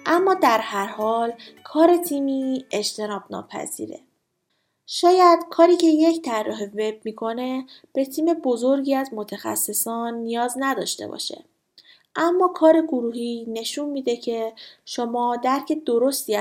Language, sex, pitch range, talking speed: Persian, female, 215-280 Hz, 115 wpm